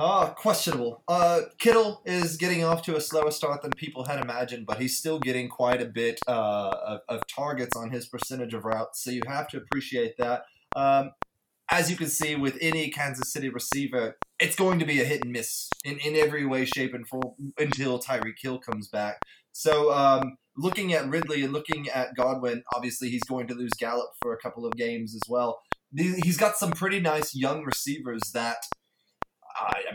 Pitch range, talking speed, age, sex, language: 120-155 Hz, 195 wpm, 20-39, male, English